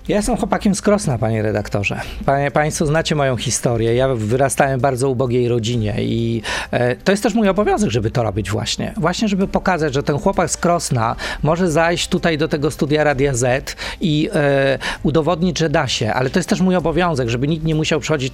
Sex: male